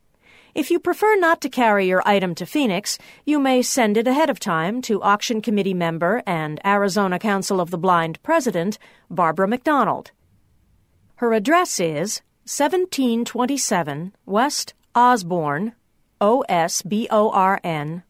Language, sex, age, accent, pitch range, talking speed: English, female, 50-69, American, 175-255 Hz, 125 wpm